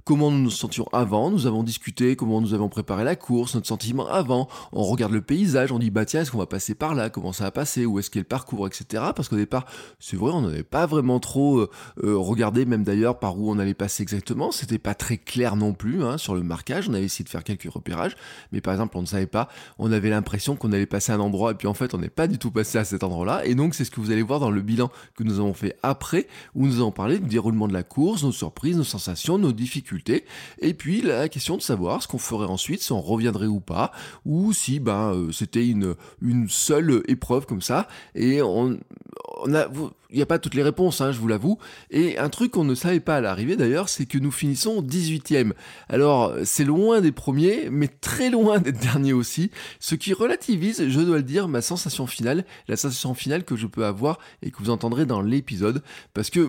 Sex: male